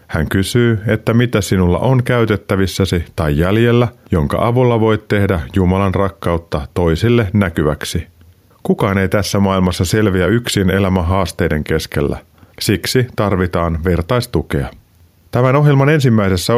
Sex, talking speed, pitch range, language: male, 115 wpm, 90-115 Hz, Finnish